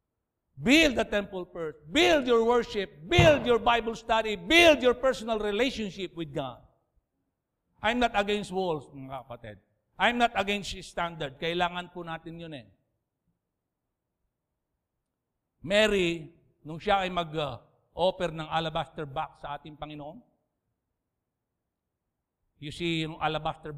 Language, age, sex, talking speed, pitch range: English, 50-69, male, 120 wpm, 155-205 Hz